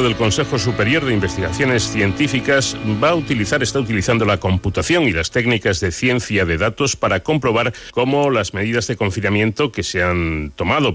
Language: Spanish